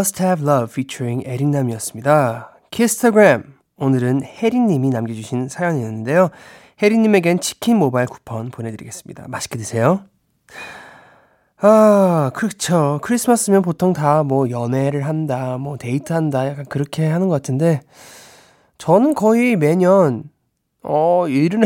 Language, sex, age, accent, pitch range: Korean, male, 20-39, native, 130-185 Hz